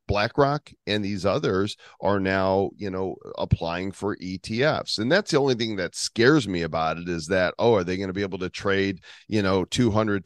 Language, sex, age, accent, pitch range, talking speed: English, male, 40-59, American, 95-115 Hz, 205 wpm